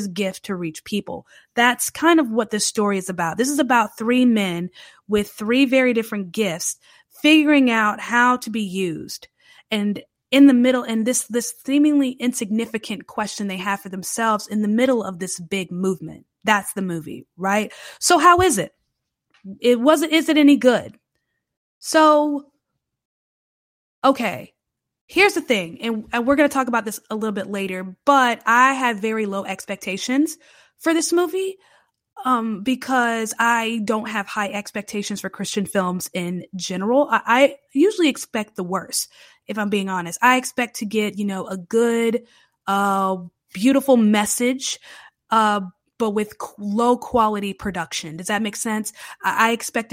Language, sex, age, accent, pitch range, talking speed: English, female, 20-39, American, 205-255 Hz, 160 wpm